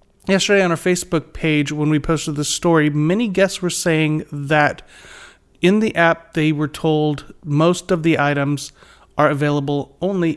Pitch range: 155-195 Hz